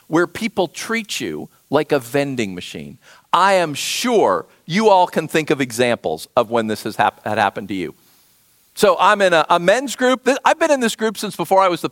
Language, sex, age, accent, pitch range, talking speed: English, male, 50-69, American, 180-275 Hz, 215 wpm